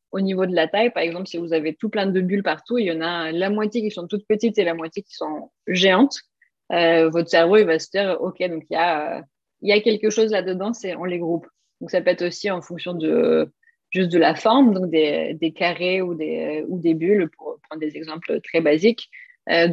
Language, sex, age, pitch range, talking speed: French, female, 20-39, 165-205 Hz, 245 wpm